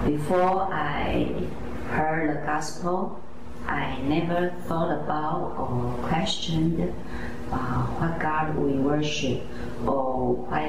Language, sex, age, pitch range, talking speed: English, female, 30-49, 120-155 Hz, 100 wpm